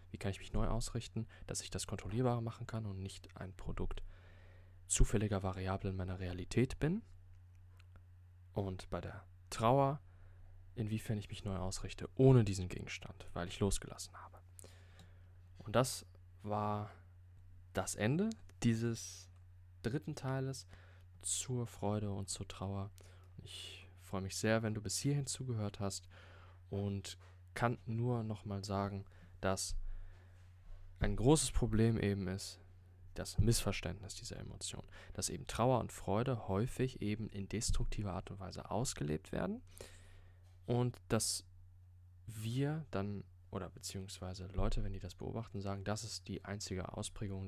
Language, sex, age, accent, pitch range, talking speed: German, male, 20-39, German, 90-105 Hz, 135 wpm